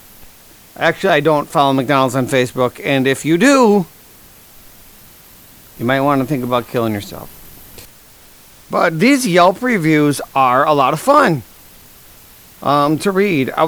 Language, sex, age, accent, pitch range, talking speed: English, male, 40-59, American, 135-195 Hz, 140 wpm